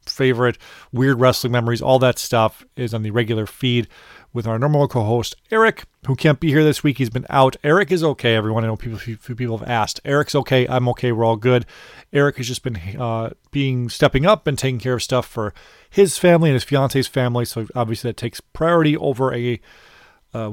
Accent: American